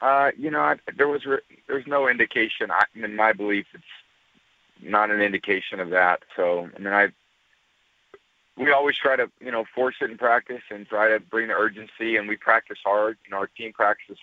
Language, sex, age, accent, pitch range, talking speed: English, male, 40-59, American, 105-115 Hz, 205 wpm